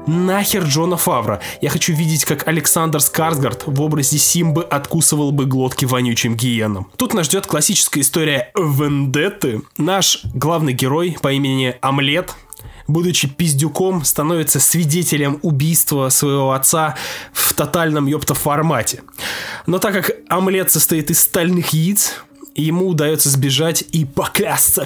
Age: 20-39